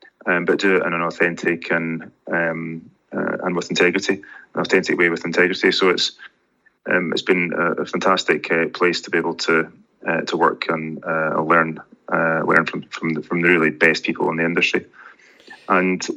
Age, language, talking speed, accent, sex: 20-39, English, 200 wpm, British, male